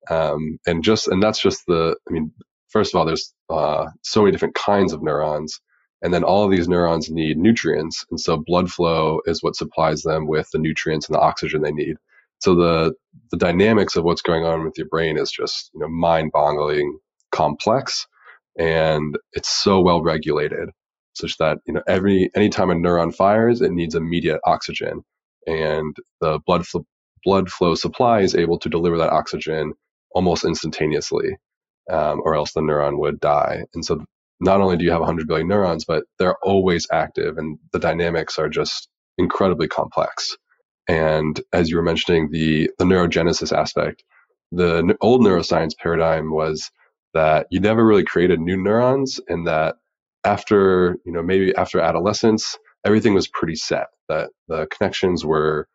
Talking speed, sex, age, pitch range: 175 wpm, male, 20-39, 80-95 Hz